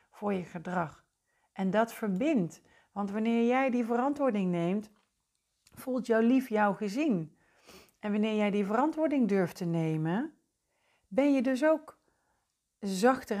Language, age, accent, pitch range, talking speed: Dutch, 40-59, Dutch, 175-235 Hz, 135 wpm